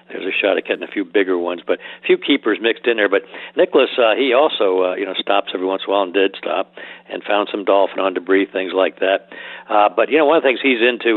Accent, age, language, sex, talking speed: American, 60-79, English, male, 280 wpm